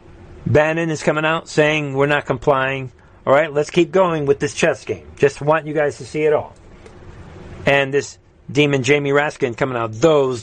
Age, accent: 50-69, American